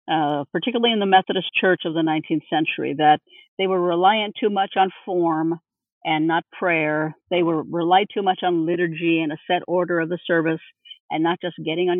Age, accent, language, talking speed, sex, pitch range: 50-69, American, English, 200 wpm, female, 165-205 Hz